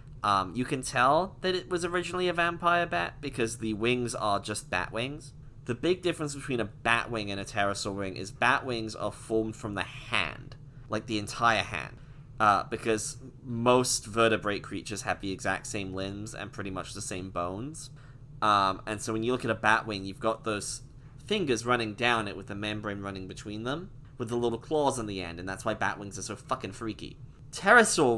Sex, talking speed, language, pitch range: male, 205 wpm, English, 105-135 Hz